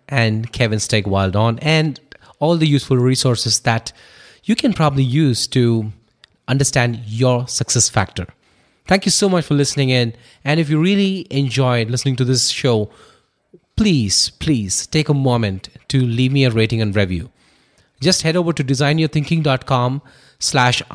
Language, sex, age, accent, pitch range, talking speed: English, male, 30-49, Indian, 115-150 Hz, 150 wpm